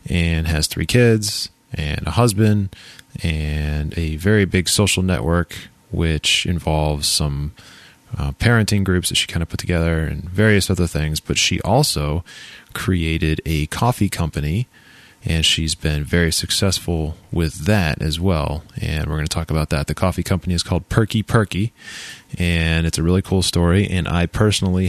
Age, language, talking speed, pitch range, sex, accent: 20-39, English, 165 wpm, 80-100 Hz, male, American